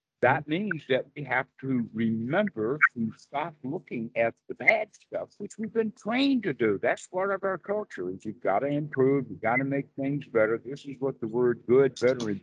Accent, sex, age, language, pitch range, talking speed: American, male, 60-79, English, 110-145 Hz, 210 wpm